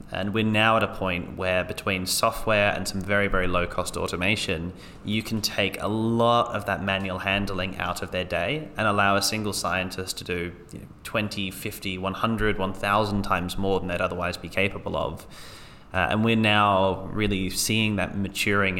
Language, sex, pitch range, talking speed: English, male, 95-105 Hz, 180 wpm